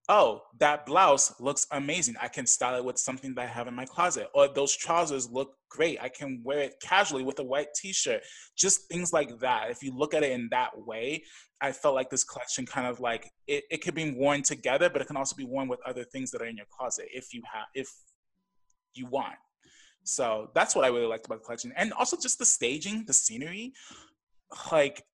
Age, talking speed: 20-39, 220 wpm